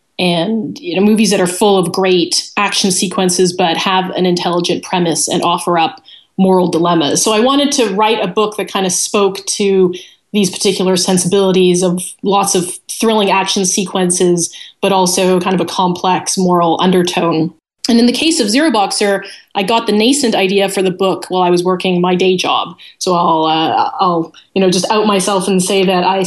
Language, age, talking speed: English, 20-39, 195 wpm